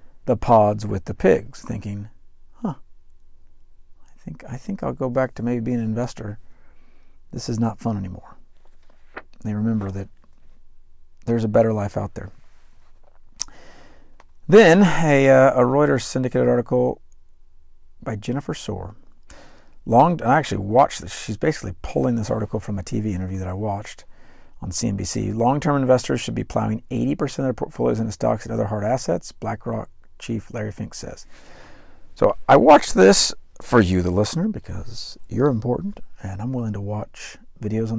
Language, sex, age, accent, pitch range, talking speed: English, male, 50-69, American, 75-115 Hz, 165 wpm